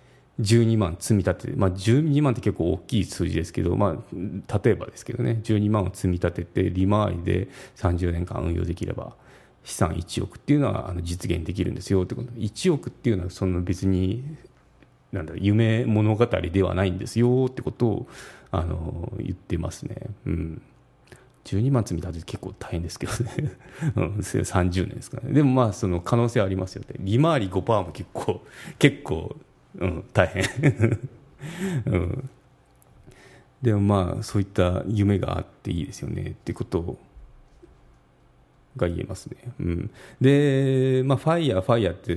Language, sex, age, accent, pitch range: Japanese, male, 30-49, native, 95-125 Hz